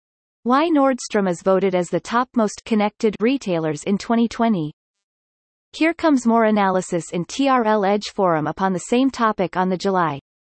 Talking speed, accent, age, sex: 155 wpm, American, 30-49, female